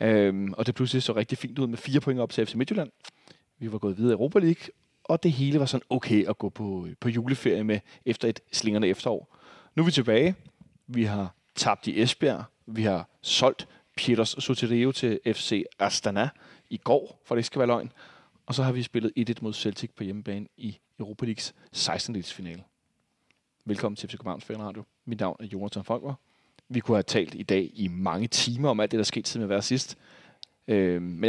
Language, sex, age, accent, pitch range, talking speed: Danish, male, 30-49, native, 110-135 Hz, 205 wpm